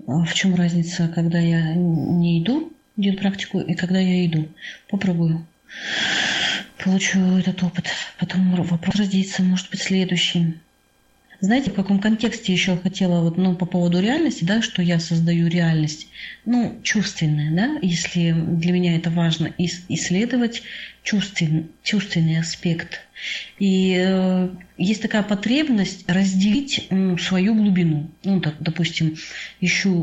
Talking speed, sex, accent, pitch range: 130 wpm, female, native, 170-195 Hz